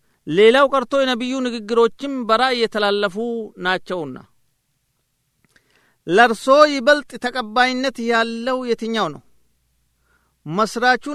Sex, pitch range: male, 140-225 Hz